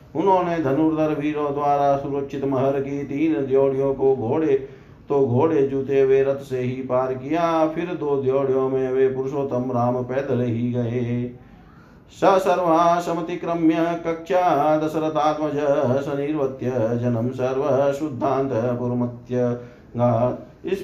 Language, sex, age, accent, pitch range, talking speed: Hindi, male, 50-69, native, 125-155 Hz, 115 wpm